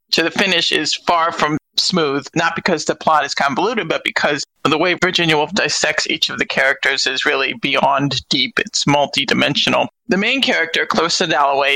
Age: 40-59